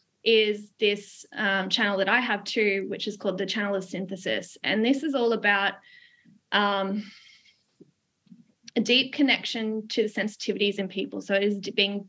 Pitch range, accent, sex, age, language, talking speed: 195-225 Hz, Australian, female, 10-29, English, 165 wpm